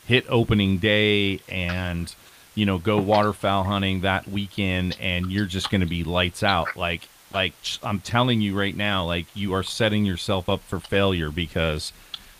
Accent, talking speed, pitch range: American, 170 wpm, 95-110 Hz